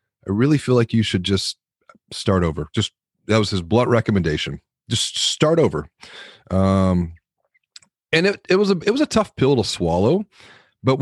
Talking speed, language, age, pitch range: 175 wpm, English, 30-49, 90-110 Hz